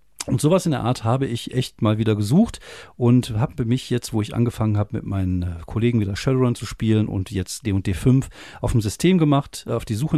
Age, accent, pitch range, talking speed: 40-59, German, 100-130 Hz, 220 wpm